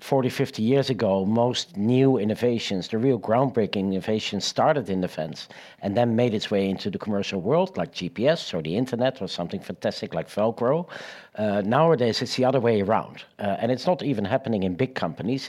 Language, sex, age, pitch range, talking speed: Dutch, male, 60-79, 105-135 Hz, 195 wpm